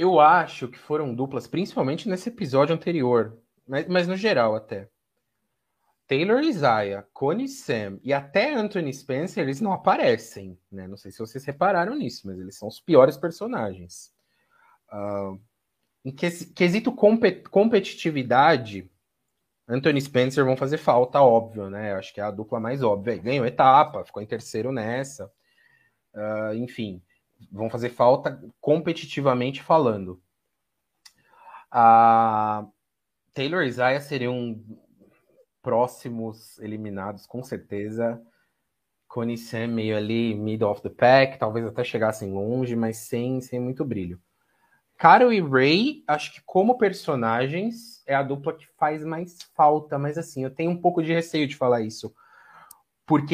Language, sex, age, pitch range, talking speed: Portuguese, male, 30-49, 110-165 Hz, 140 wpm